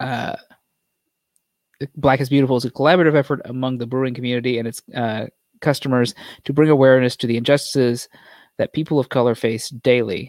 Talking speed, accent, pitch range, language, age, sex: 165 wpm, American, 120-140 Hz, English, 30-49, male